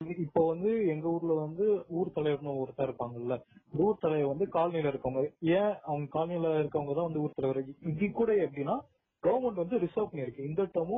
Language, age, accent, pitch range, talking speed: Tamil, 20-39, native, 140-180 Hz, 165 wpm